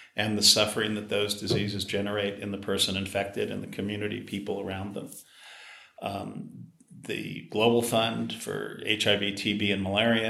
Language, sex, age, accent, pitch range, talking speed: English, male, 50-69, American, 100-110 Hz, 150 wpm